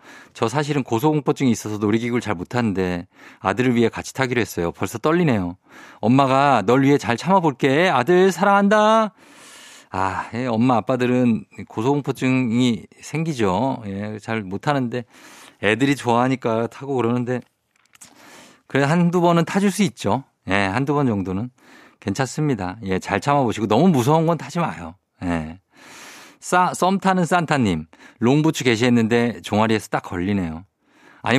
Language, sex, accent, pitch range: Korean, male, native, 100-140 Hz